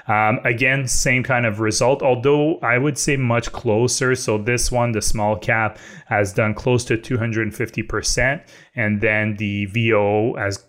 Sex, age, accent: male, 20-39, Canadian